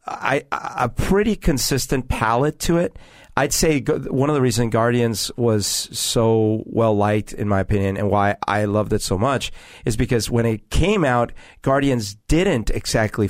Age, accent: 40-59, American